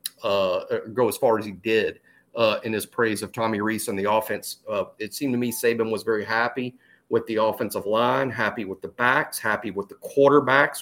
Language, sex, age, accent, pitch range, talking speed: English, male, 40-59, American, 115-145 Hz, 210 wpm